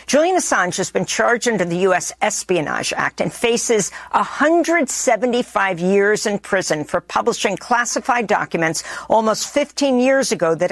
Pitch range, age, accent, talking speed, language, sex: 170-235 Hz, 50-69, American, 140 wpm, English, female